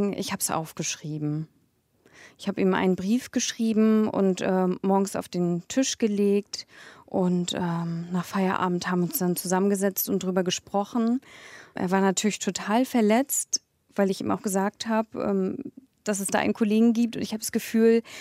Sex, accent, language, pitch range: female, German, German, 190-225 Hz